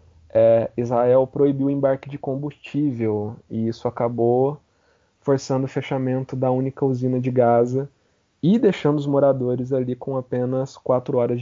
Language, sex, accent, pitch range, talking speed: Portuguese, male, Brazilian, 115-140 Hz, 135 wpm